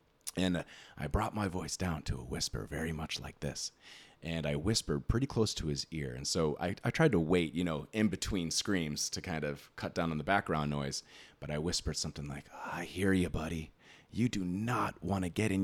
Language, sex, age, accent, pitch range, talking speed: English, male, 30-49, American, 80-105 Hz, 225 wpm